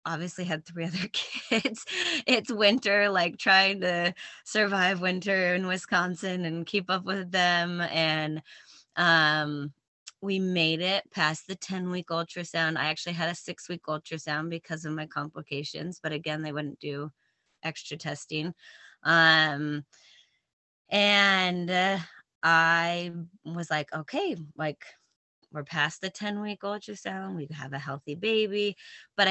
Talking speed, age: 130 wpm, 20-39